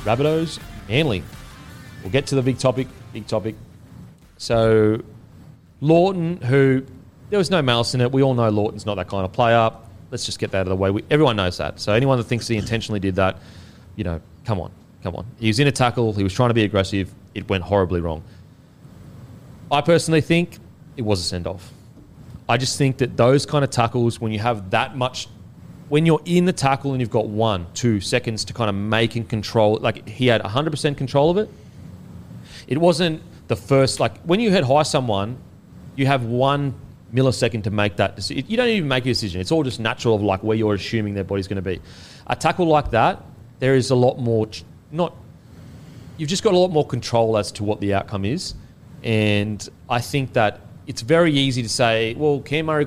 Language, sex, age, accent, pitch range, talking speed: English, male, 30-49, Australian, 105-140 Hz, 210 wpm